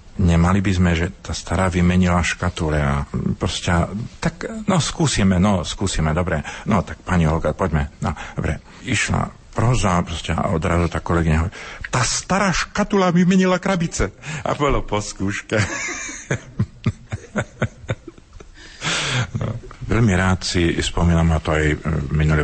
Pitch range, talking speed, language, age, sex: 70-85 Hz, 120 wpm, Slovak, 50-69, male